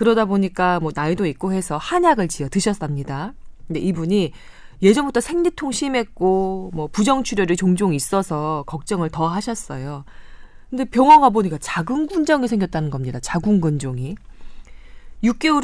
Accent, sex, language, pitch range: native, female, Korean, 155-225 Hz